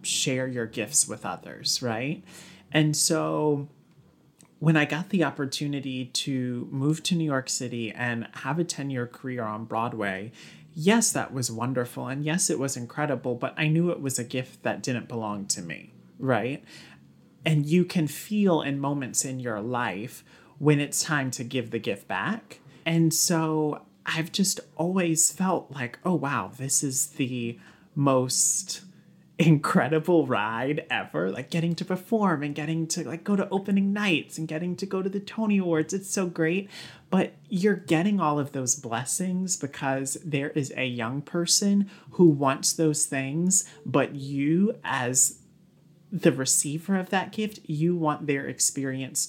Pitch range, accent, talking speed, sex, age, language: 130-175 Hz, American, 160 wpm, male, 30-49, English